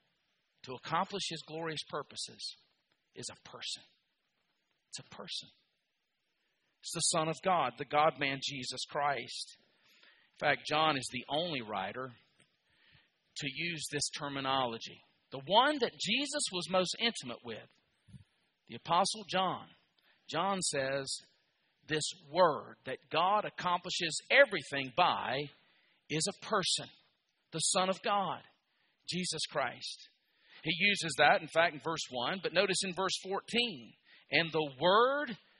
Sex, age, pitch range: male, 50-69, 145-200 Hz